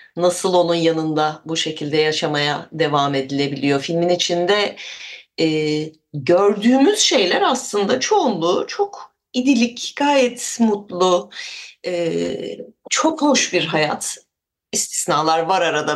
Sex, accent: female, native